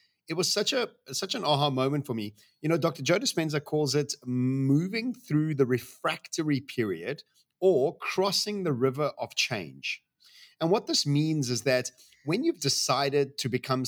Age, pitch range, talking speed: 30-49, 125-155 Hz, 170 wpm